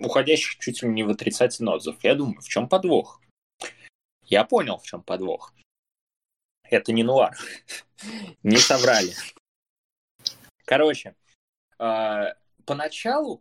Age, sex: 20-39, male